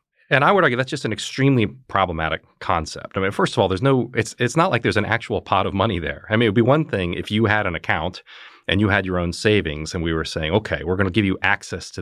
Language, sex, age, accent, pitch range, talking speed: English, male, 40-59, American, 90-120 Hz, 290 wpm